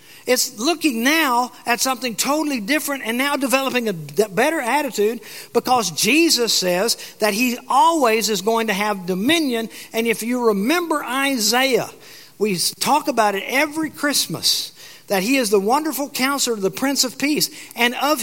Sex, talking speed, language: male, 160 wpm, English